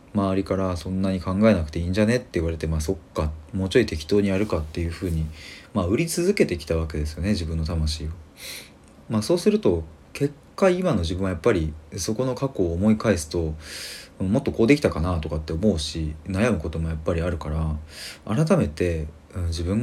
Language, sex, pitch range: Japanese, male, 80-105 Hz